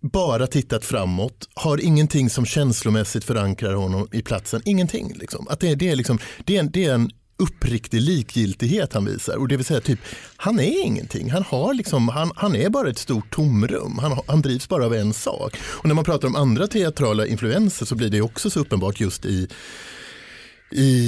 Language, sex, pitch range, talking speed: Swedish, male, 105-140 Hz, 200 wpm